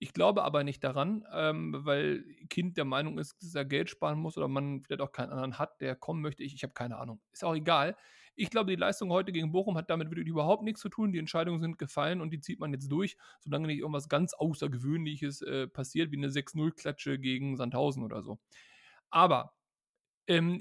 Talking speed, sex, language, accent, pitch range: 215 wpm, male, German, German, 145-190 Hz